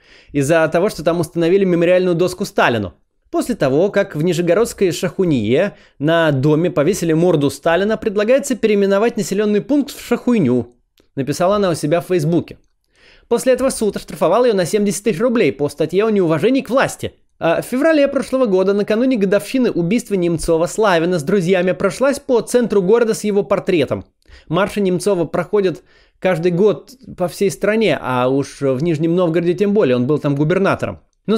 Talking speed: 160 wpm